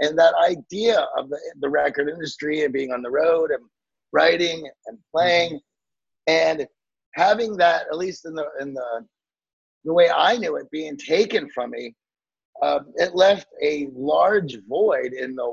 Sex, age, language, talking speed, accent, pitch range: male, 30-49, English, 165 wpm, American, 145-175 Hz